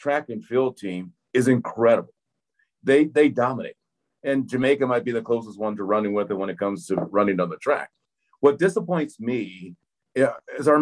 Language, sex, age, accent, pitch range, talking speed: English, male, 50-69, American, 110-140 Hz, 185 wpm